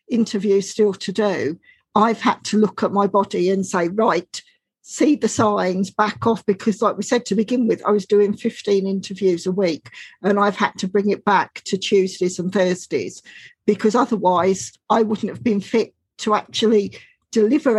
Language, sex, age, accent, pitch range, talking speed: English, female, 50-69, British, 205-240 Hz, 180 wpm